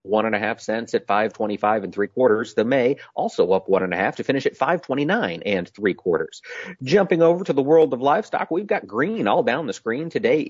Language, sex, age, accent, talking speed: English, male, 40-59, American, 250 wpm